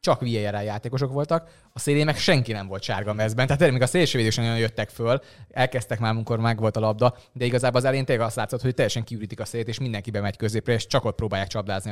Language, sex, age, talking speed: Hungarian, male, 20-39, 240 wpm